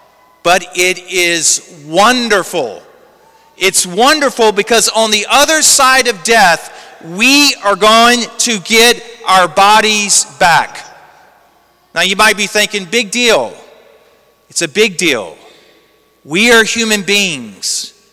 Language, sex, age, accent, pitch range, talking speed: English, male, 40-59, American, 195-260 Hz, 120 wpm